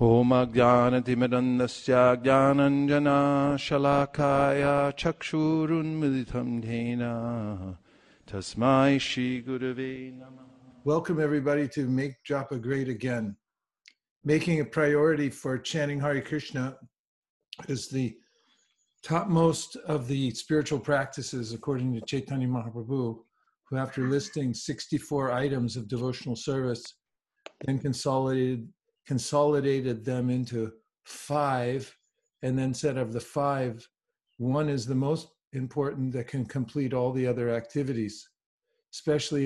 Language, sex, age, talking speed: English, male, 50-69, 90 wpm